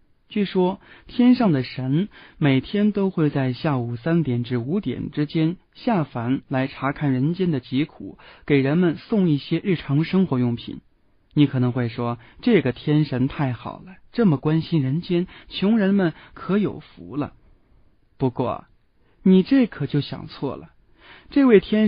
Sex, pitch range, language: male, 130-185 Hz, Chinese